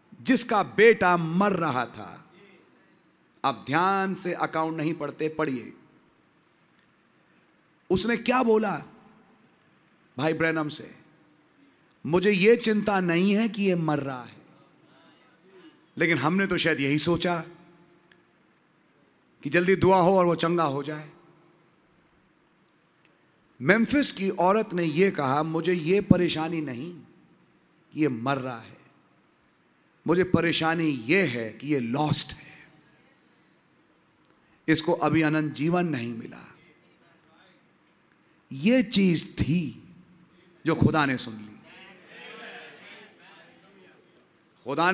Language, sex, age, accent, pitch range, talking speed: English, male, 40-59, Indian, 155-210 Hz, 110 wpm